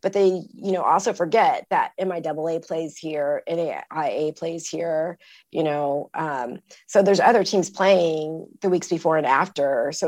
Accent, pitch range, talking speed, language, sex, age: American, 160-195 Hz, 160 wpm, English, female, 30-49